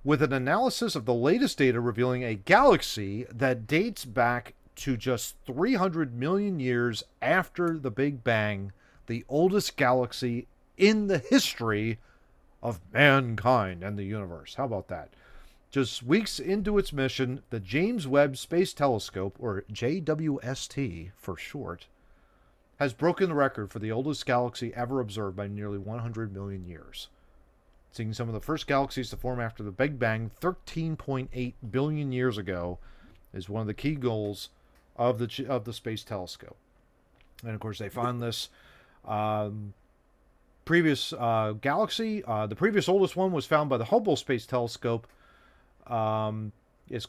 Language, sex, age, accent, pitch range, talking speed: English, male, 40-59, American, 105-140 Hz, 150 wpm